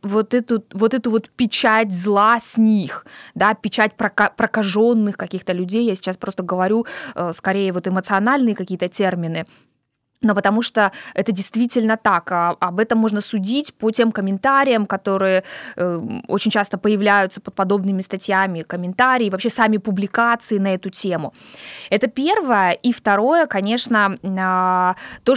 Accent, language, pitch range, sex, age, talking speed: native, Russian, 195-235 Hz, female, 20-39, 130 wpm